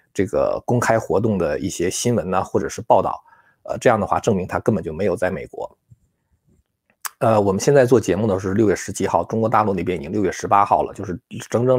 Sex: male